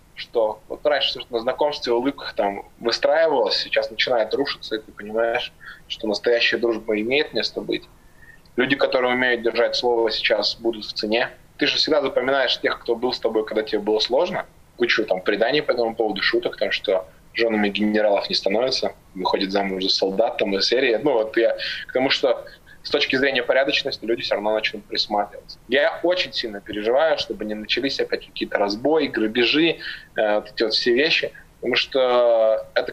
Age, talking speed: 20-39, 175 wpm